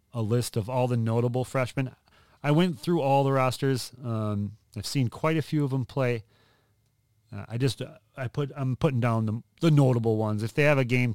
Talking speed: 215 wpm